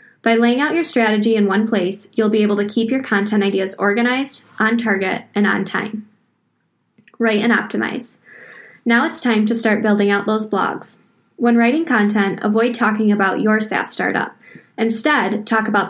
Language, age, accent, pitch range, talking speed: English, 10-29, American, 200-235 Hz, 175 wpm